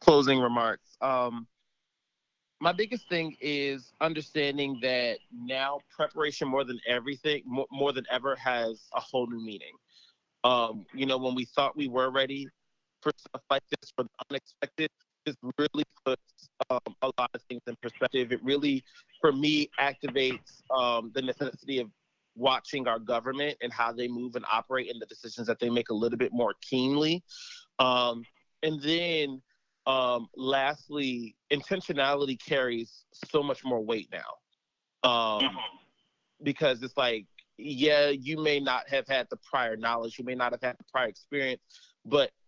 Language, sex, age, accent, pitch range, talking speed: English, male, 30-49, American, 120-145 Hz, 155 wpm